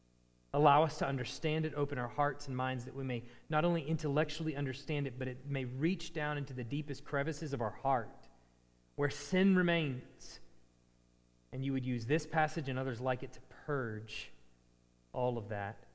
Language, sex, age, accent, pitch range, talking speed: English, male, 30-49, American, 125-205 Hz, 180 wpm